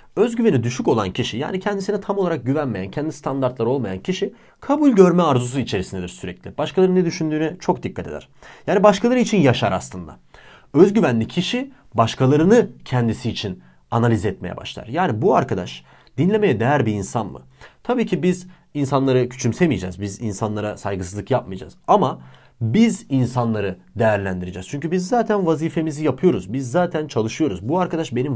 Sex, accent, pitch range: male, Turkish, 110-180 Hz